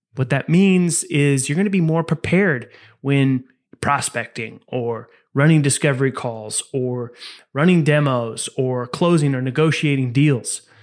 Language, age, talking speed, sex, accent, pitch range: English, 30-49, 135 wpm, male, American, 130-165 Hz